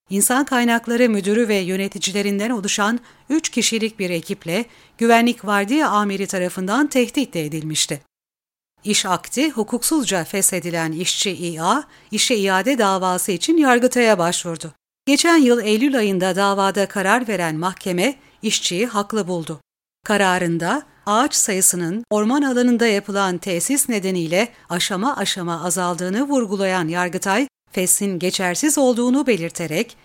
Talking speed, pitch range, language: 115 wpm, 185-245 Hz, Turkish